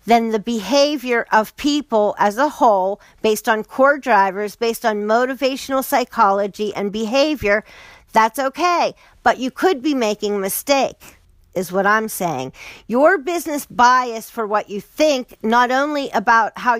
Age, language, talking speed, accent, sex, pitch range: 50-69, English, 150 wpm, American, female, 205-265 Hz